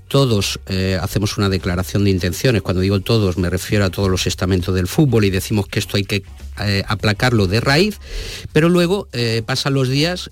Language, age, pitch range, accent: Spanish, 50-69, 95-135 Hz, Spanish